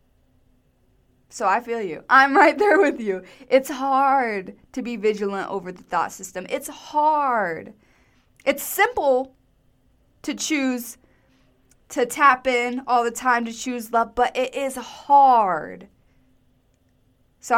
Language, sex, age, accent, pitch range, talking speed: English, female, 20-39, American, 195-265 Hz, 130 wpm